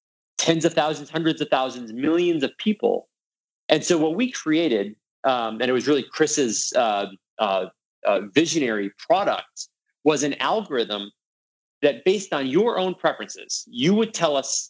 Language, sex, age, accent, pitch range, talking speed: English, male, 30-49, American, 125-190 Hz, 155 wpm